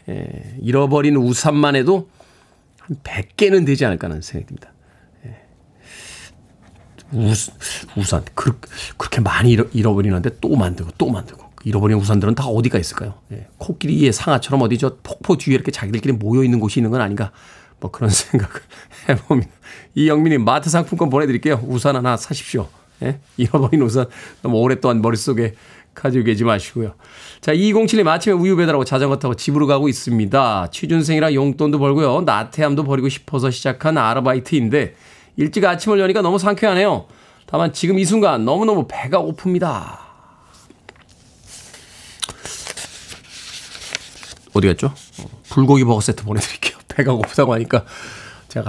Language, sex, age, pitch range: Korean, male, 40-59, 115-155 Hz